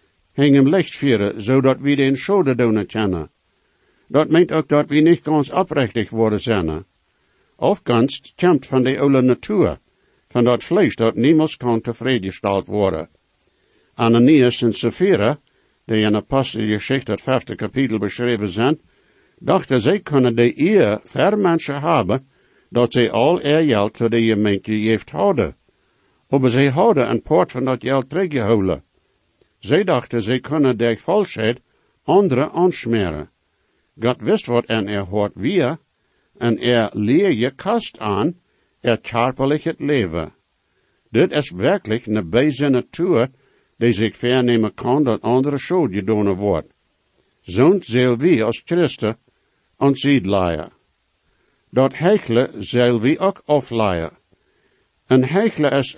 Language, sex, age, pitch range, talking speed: English, male, 60-79, 110-140 Hz, 140 wpm